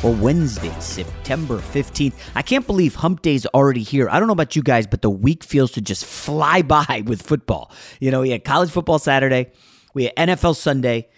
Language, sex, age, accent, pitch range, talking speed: English, male, 30-49, American, 100-140 Hz, 210 wpm